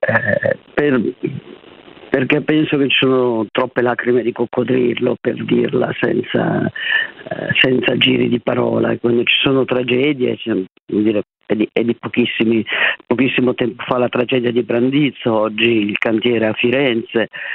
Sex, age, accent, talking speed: male, 50-69, native, 145 wpm